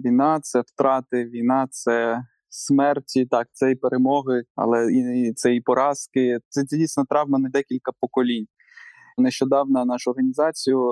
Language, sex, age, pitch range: Ukrainian, male, 20-39, 130-150 Hz